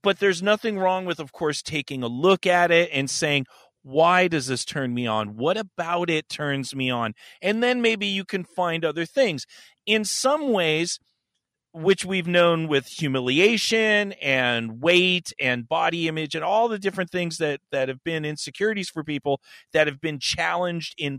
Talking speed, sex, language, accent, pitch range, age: 180 wpm, male, English, American, 150-200 Hz, 40-59